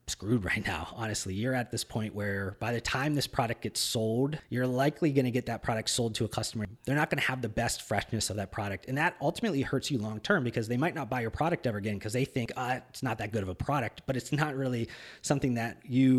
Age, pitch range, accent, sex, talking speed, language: 30-49, 105-135 Hz, American, male, 260 wpm, English